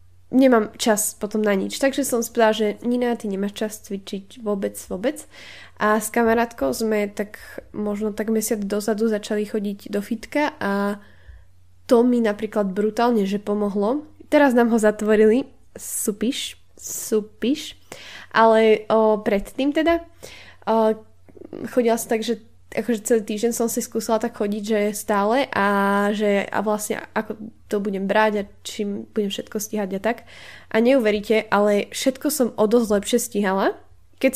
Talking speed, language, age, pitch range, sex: 150 wpm, Slovak, 10-29, 205-235 Hz, female